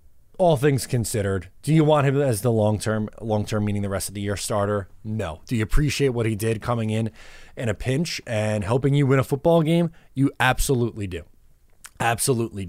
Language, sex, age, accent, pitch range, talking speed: English, male, 20-39, American, 105-140 Hz, 205 wpm